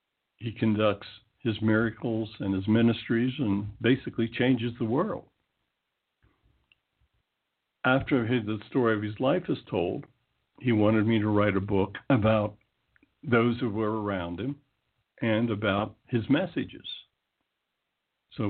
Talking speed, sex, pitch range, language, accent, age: 125 wpm, male, 105-115 Hz, English, American, 60-79